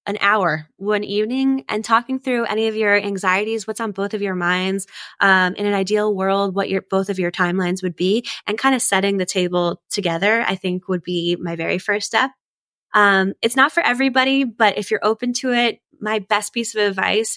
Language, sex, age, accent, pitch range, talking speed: English, female, 10-29, American, 180-225 Hz, 210 wpm